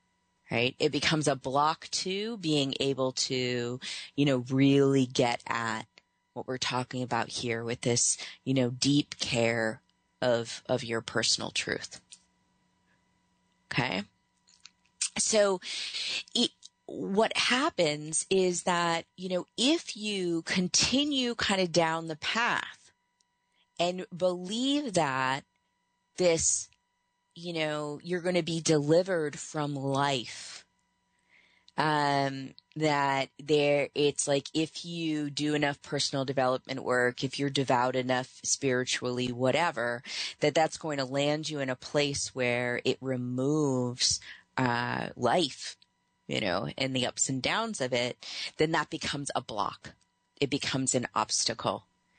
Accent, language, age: American, English, 30-49